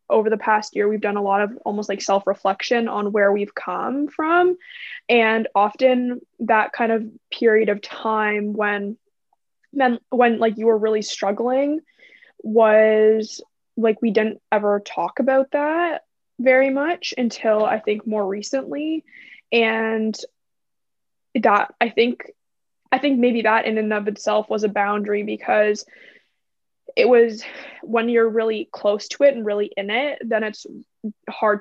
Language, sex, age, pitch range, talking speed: English, female, 20-39, 210-245 Hz, 150 wpm